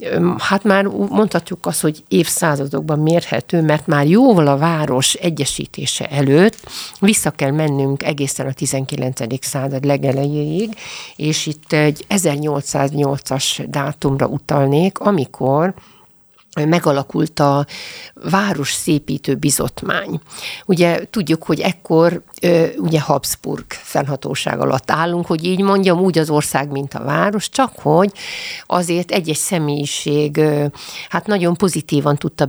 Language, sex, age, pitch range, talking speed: Hungarian, female, 50-69, 140-180 Hz, 115 wpm